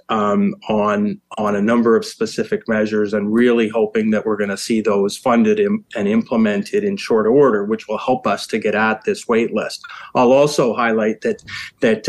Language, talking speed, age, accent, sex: English, 195 wpm, 30-49, American, male